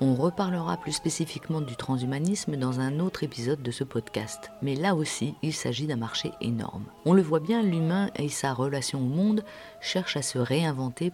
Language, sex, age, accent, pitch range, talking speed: French, female, 50-69, French, 125-155 Hz, 190 wpm